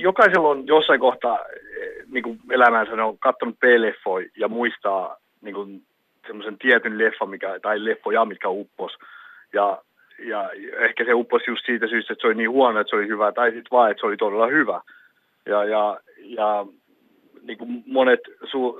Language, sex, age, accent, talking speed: Finnish, male, 30-49, native, 160 wpm